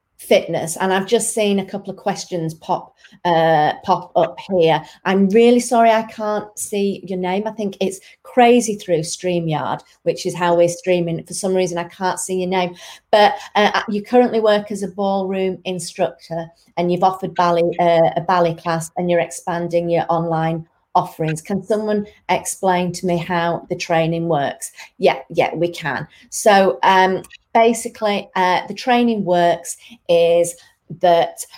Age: 30-49